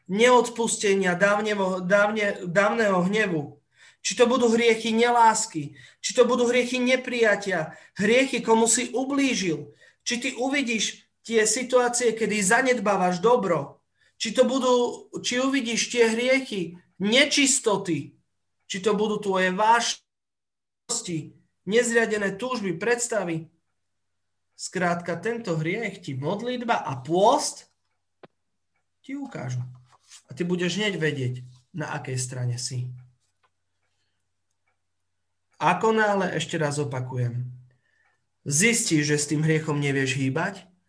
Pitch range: 135-225 Hz